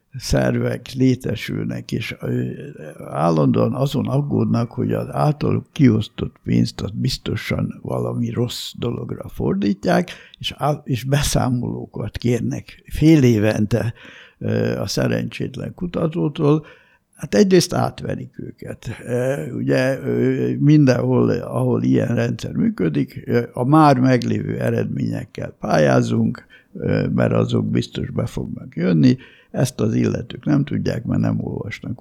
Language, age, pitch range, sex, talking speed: Hungarian, 60-79, 110-140 Hz, male, 105 wpm